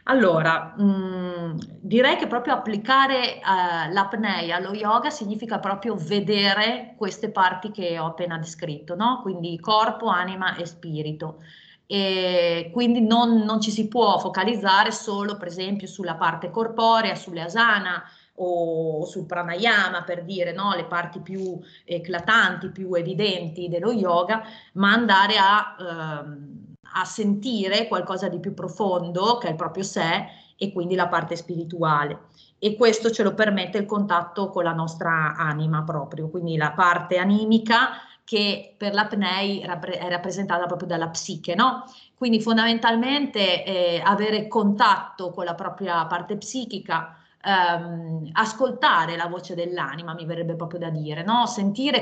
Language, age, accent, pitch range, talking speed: Italian, 30-49, native, 175-220 Hz, 140 wpm